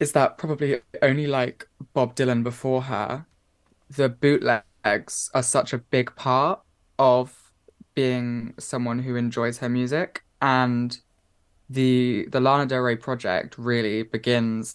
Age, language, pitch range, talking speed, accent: 20-39, English, 95-125 Hz, 130 wpm, British